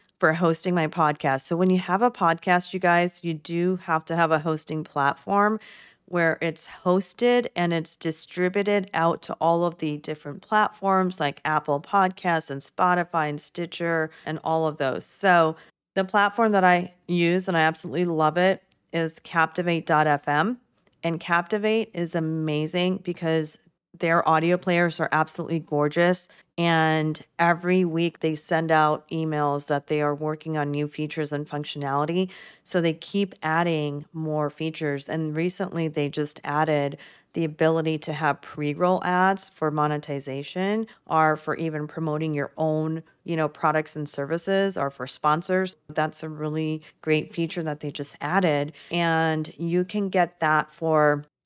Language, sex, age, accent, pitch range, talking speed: English, female, 30-49, American, 155-180 Hz, 155 wpm